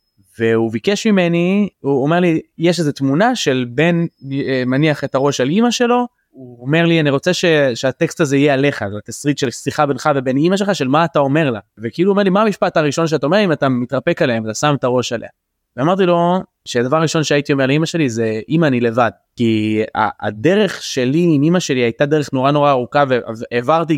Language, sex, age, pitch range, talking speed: Hebrew, male, 20-39, 125-165 Hz, 210 wpm